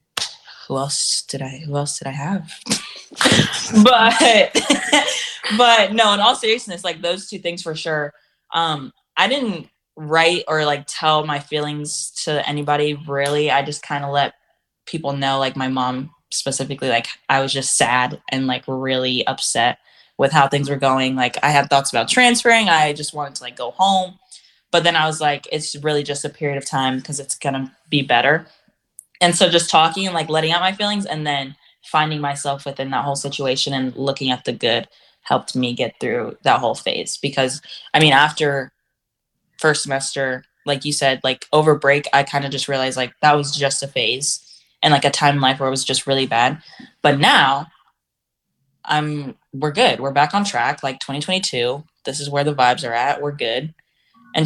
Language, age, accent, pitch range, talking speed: English, 10-29, American, 135-155 Hz, 190 wpm